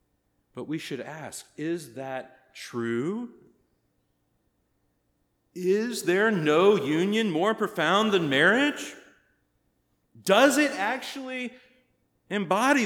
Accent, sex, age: American, male, 40-59